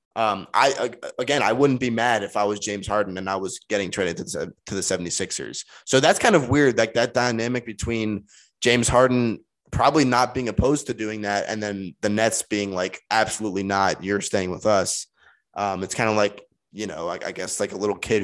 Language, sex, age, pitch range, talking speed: English, male, 20-39, 100-125 Hz, 205 wpm